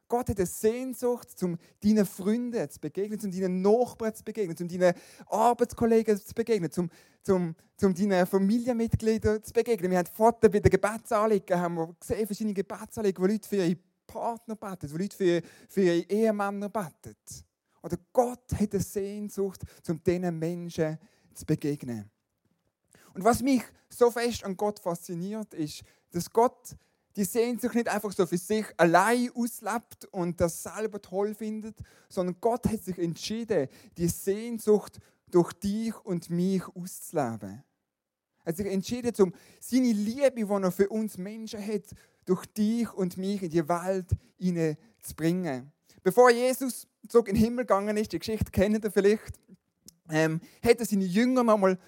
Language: German